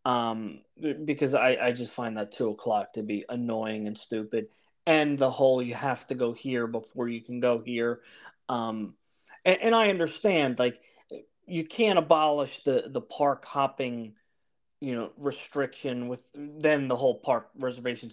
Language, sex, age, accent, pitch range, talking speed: English, male, 30-49, American, 120-145 Hz, 160 wpm